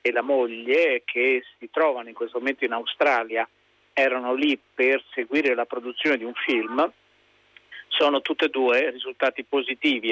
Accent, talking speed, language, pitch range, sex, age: native, 155 wpm, Italian, 125-165 Hz, male, 40-59